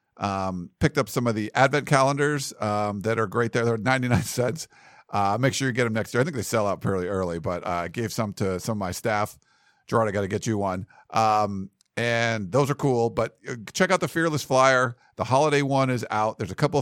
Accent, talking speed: American, 235 wpm